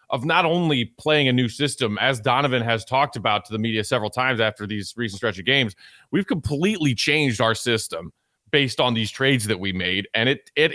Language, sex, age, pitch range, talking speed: English, male, 30-49, 120-150 Hz, 210 wpm